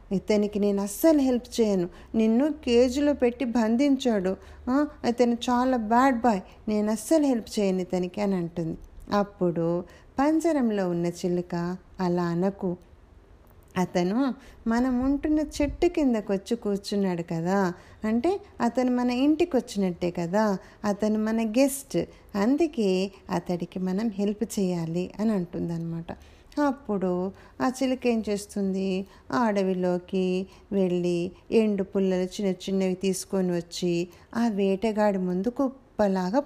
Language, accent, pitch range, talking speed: Telugu, native, 185-240 Hz, 100 wpm